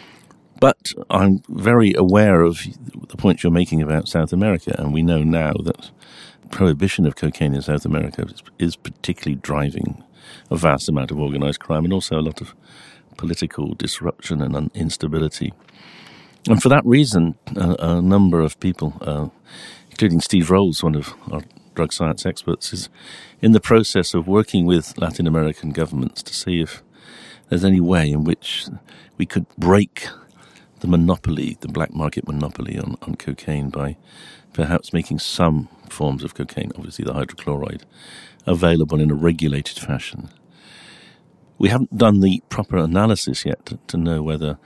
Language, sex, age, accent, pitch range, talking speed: English, male, 50-69, British, 75-90 Hz, 155 wpm